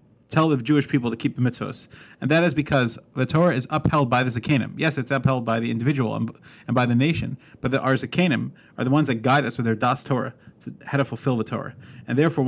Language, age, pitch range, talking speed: English, 30-49, 120-140 Hz, 240 wpm